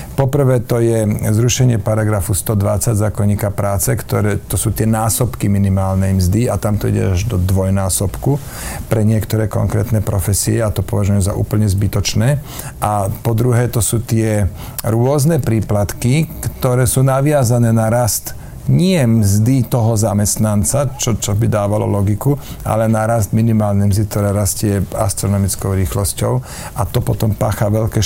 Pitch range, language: 105-125 Hz, Slovak